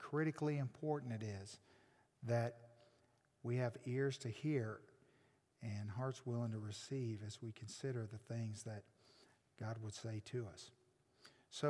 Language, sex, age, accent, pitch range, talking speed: English, male, 50-69, American, 125-155 Hz, 140 wpm